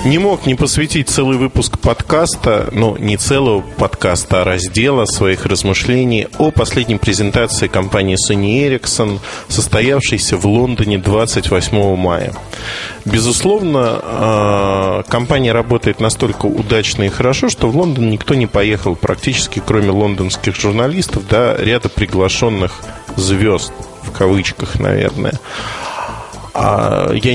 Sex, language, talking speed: male, Russian, 110 wpm